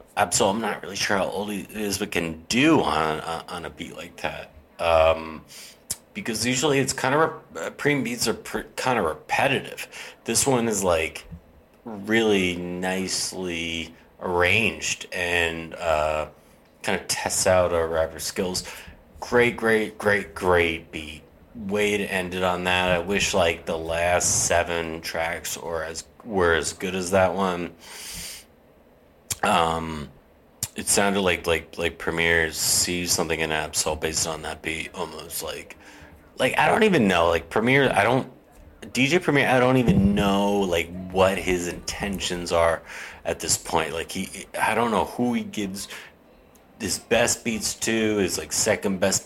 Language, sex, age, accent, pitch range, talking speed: English, male, 30-49, American, 80-100 Hz, 160 wpm